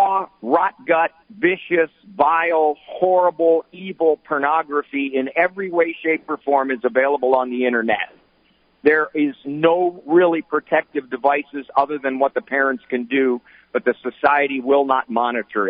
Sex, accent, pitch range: male, American, 140-195 Hz